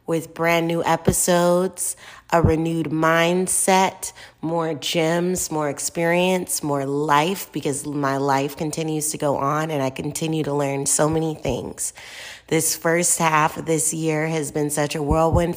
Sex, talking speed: female, 150 wpm